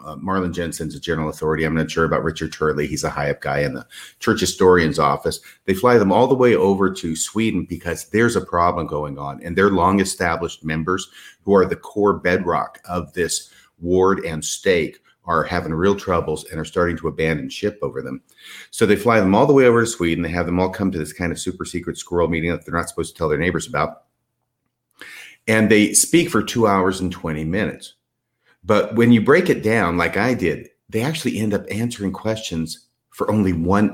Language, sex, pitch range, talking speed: English, male, 85-110 Hz, 215 wpm